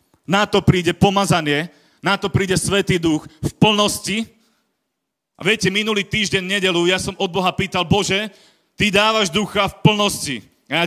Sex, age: male, 40-59